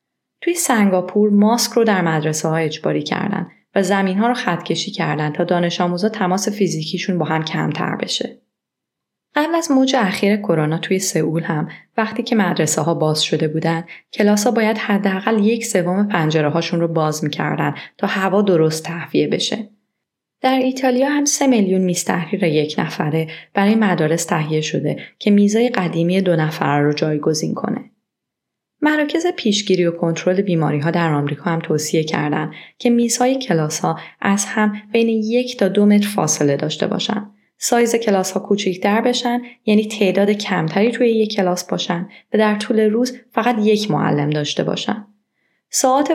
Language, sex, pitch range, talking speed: Persian, female, 165-225 Hz, 155 wpm